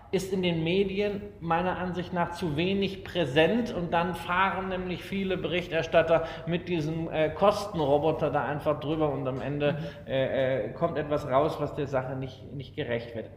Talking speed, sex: 170 wpm, male